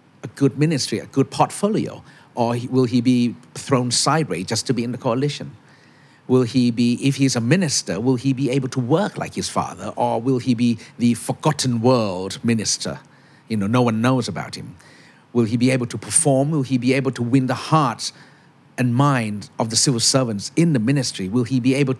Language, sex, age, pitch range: Thai, male, 50-69, 115-135 Hz